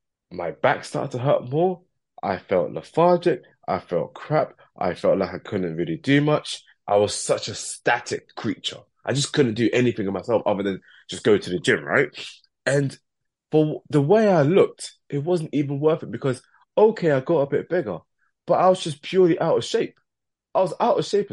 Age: 20-39